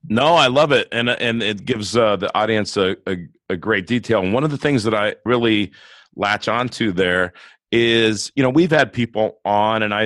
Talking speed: 215 wpm